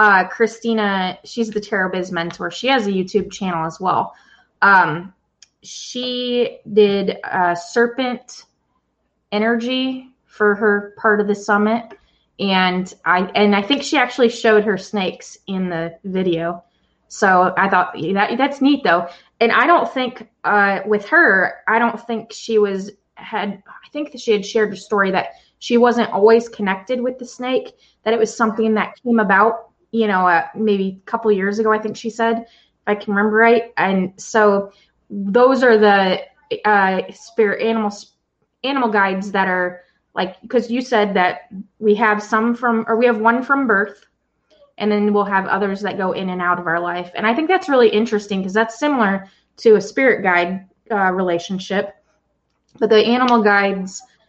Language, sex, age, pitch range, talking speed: English, female, 20-39, 190-230 Hz, 175 wpm